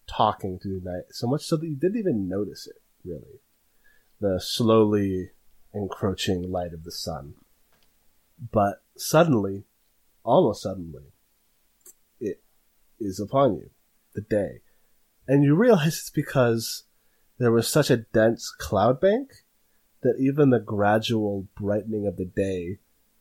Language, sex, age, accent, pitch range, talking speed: English, male, 30-49, American, 90-115 Hz, 130 wpm